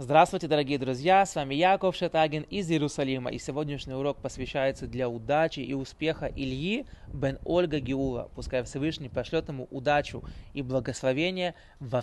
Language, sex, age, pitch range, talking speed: Russian, male, 20-39, 135-175 Hz, 145 wpm